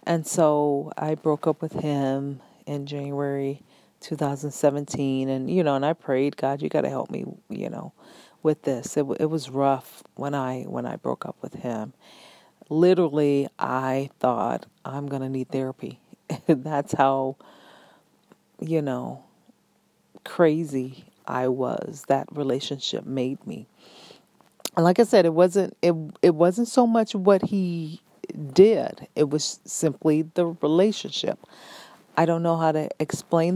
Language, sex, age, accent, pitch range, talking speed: English, female, 40-59, American, 140-175 Hz, 150 wpm